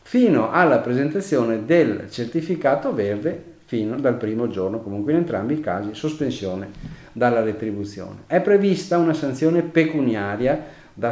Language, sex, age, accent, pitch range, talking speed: Italian, male, 50-69, native, 110-165 Hz, 130 wpm